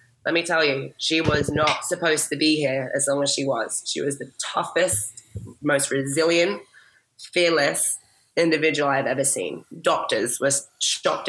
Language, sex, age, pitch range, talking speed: English, female, 20-39, 140-160 Hz, 160 wpm